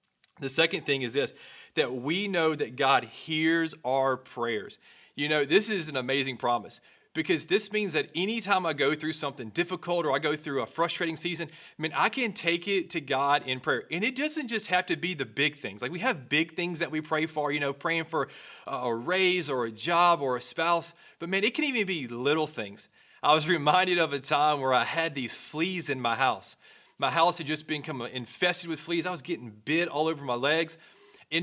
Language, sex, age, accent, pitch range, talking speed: English, male, 30-49, American, 140-175 Hz, 220 wpm